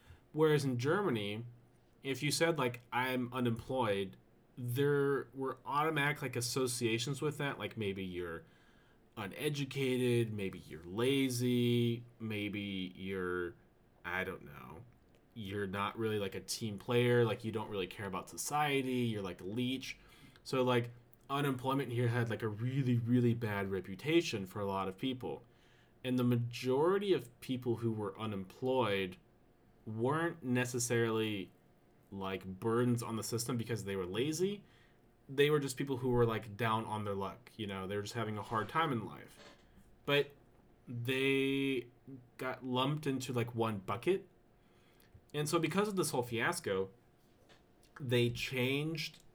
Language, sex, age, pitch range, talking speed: English, male, 30-49, 110-130 Hz, 145 wpm